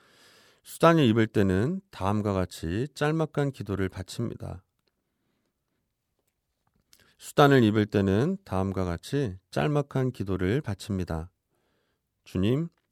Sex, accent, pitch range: male, native, 95-130 Hz